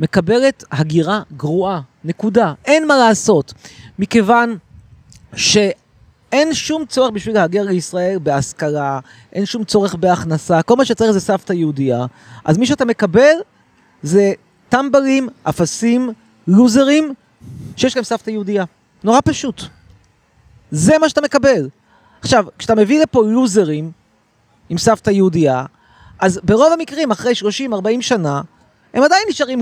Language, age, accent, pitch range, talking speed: Hebrew, 30-49, native, 175-255 Hz, 120 wpm